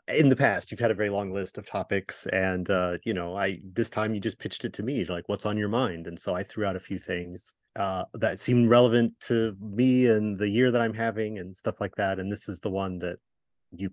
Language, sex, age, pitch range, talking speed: English, male, 30-49, 95-120 Hz, 265 wpm